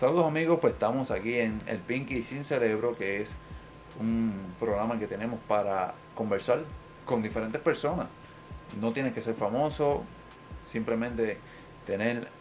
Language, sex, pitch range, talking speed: Spanish, male, 100-120 Hz, 135 wpm